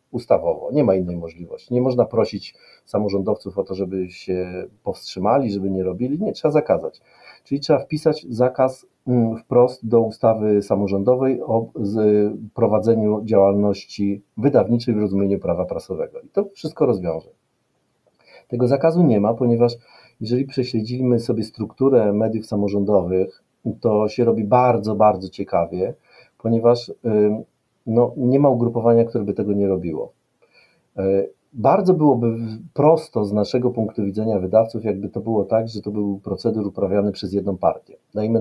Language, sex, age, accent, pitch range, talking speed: Polish, male, 40-59, native, 100-125 Hz, 135 wpm